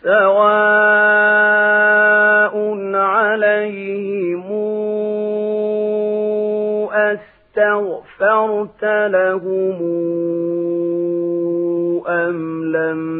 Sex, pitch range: male, 165-210 Hz